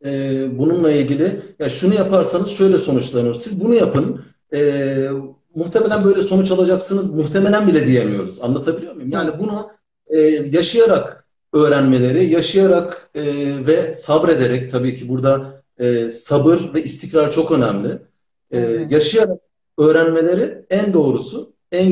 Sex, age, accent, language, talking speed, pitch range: male, 50-69, native, Turkish, 120 wpm, 140-185 Hz